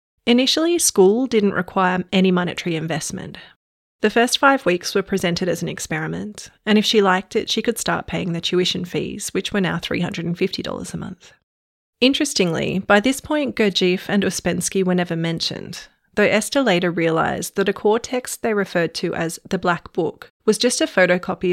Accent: Australian